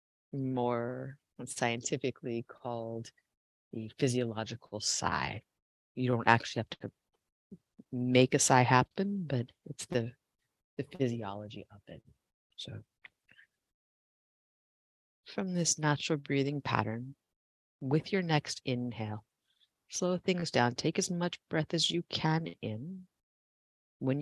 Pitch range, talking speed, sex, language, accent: 115-155 Hz, 110 wpm, female, English, American